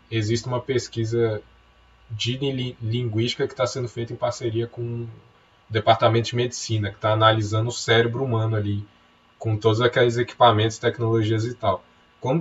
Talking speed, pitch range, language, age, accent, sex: 150 wpm, 105-125 Hz, Portuguese, 10-29, Brazilian, male